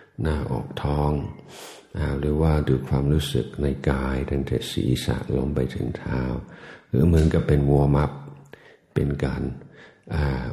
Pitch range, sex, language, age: 70-80 Hz, male, Thai, 60-79